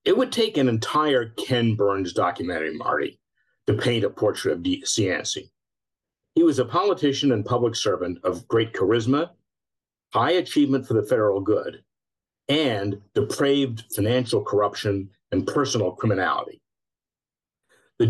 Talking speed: 135 wpm